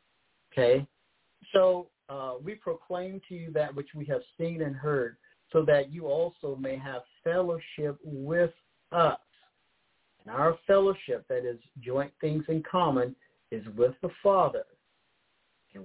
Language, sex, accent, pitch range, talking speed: English, male, American, 135-180 Hz, 140 wpm